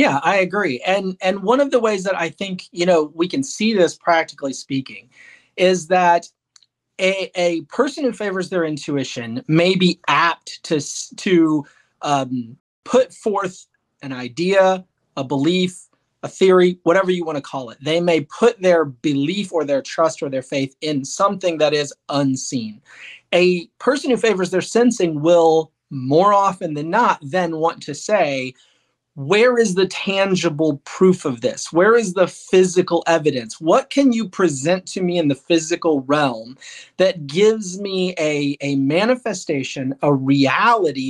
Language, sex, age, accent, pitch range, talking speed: English, male, 30-49, American, 145-190 Hz, 160 wpm